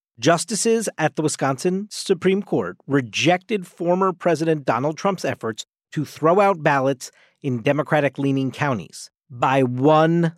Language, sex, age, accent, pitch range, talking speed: English, male, 40-59, American, 140-195 Hz, 120 wpm